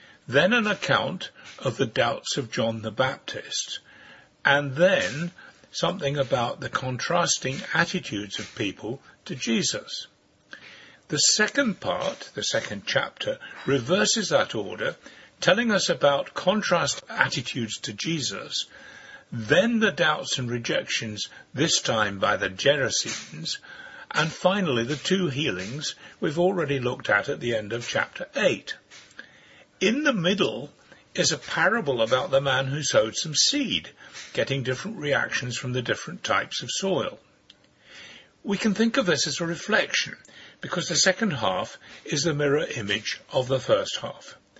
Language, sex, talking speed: English, male, 140 wpm